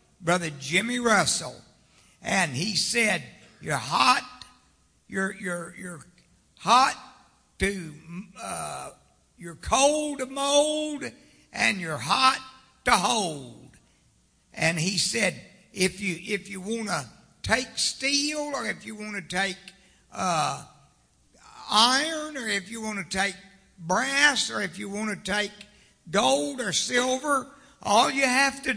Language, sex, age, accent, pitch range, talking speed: English, male, 60-79, American, 190-255 Hz, 130 wpm